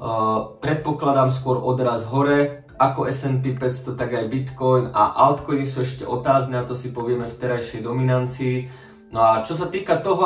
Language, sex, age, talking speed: Slovak, male, 20-39, 165 wpm